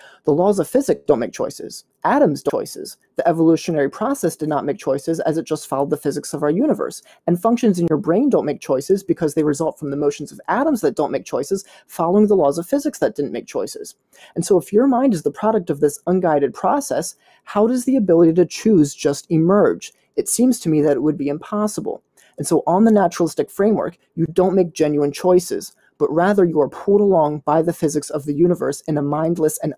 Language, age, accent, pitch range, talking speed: English, 30-49, American, 150-200 Hz, 225 wpm